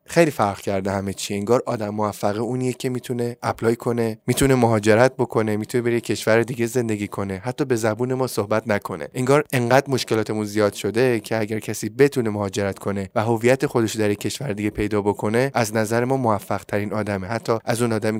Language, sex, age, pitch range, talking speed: Persian, male, 20-39, 105-125 Hz, 190 wpm